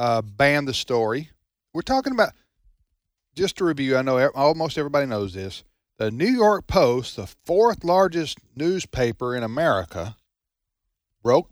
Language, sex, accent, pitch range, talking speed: English, male, American, 105-155 Hz, 145 wpm